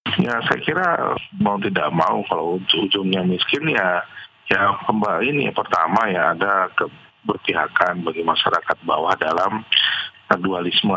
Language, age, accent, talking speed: Indonesian, 40-59, native, 120 wpm